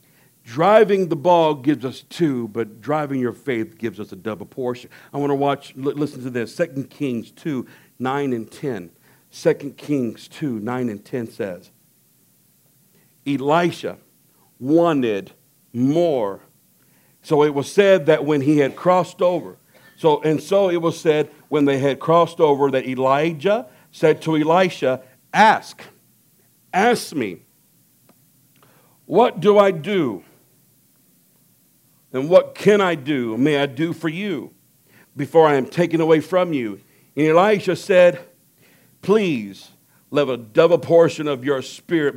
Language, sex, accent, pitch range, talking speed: English, male, American, 130-170 Hz, 140 wpm